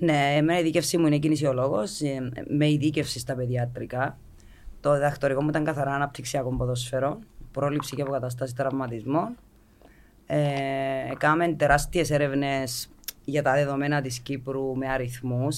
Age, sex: 30-49, female